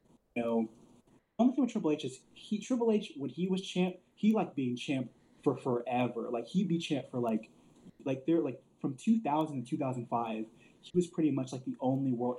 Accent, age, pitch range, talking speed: American, 20-39, 120-145 Hz, 210 wpm